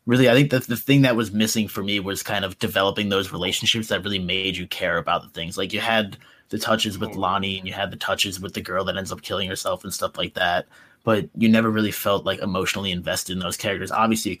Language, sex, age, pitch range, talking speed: English, male, 20-39, 90-105 Hz, 260 wpm